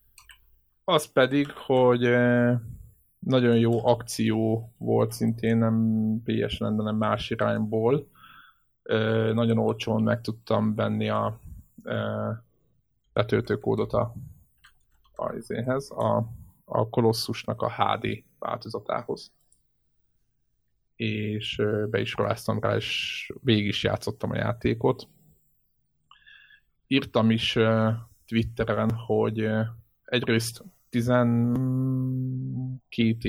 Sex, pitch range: male, 110-120 Hz